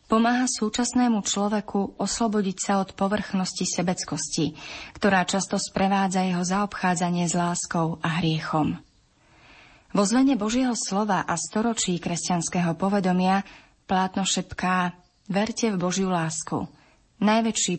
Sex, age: female, 30-49